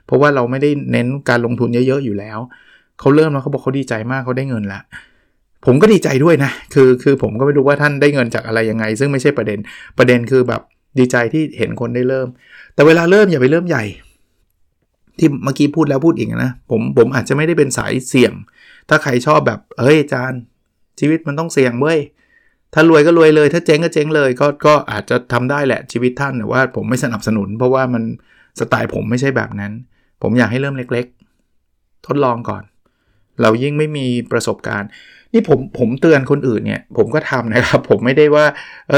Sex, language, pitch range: male, Thai, 115-150 Hz